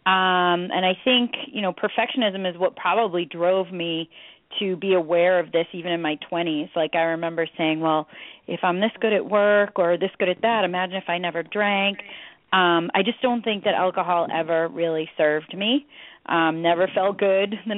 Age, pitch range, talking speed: 30-49, 170-200 Hz, 195 wpm